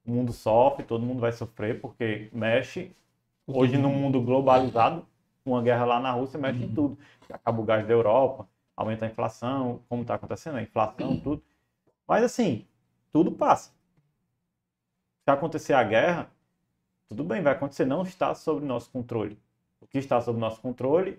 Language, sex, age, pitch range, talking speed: Portuguese, male, 20-39, 115-160 Hz, 165 wpm